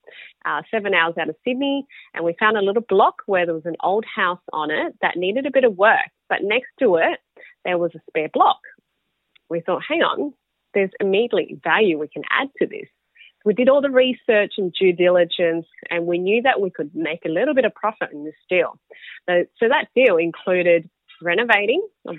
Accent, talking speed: Australian, 210 wpm